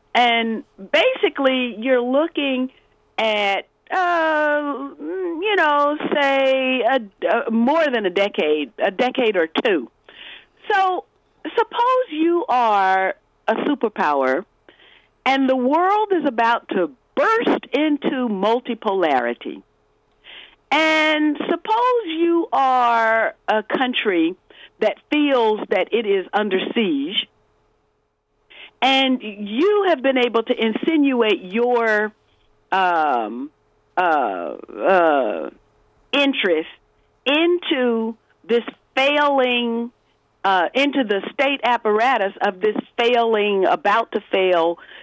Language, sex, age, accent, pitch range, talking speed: English, female, 50-69, American, 225-320 Hz, 95 wpm